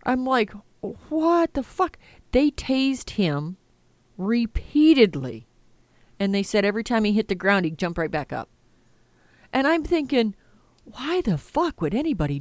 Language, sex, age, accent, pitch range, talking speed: English, female, 40-59, American, 170-240 Hz, 150 wpm